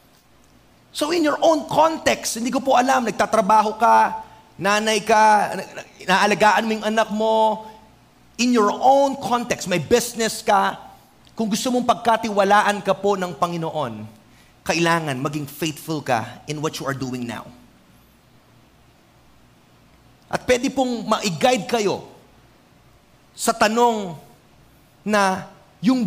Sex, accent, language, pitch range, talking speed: male, Filipino, English, 180-260 Hz, 120 wpm